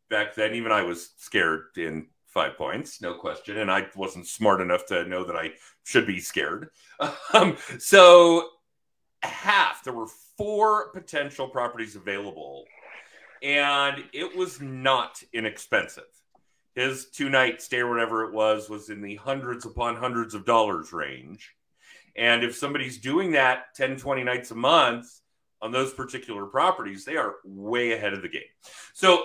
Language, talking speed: English, 155 wpm